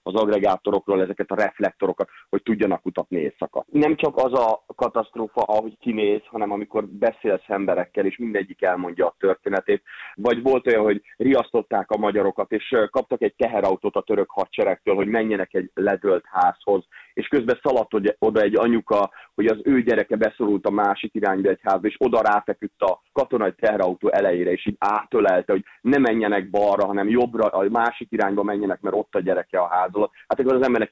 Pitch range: 100-130 Hz